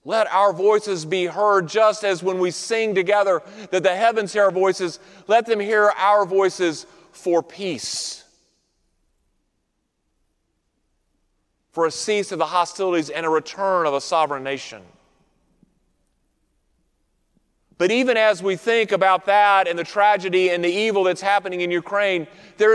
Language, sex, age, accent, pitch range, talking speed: English, male, 40-59, American, 180-220 Hz, 145 wpm